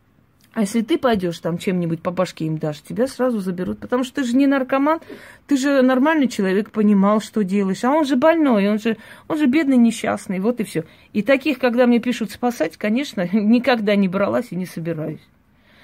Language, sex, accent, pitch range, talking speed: Russian, female, native, 190-250 Hz, 195 wpm